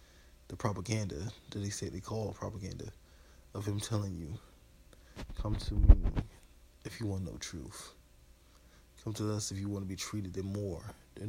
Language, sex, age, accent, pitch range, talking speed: English, male, 20-39, American, 75-100 Hz, 165 wpm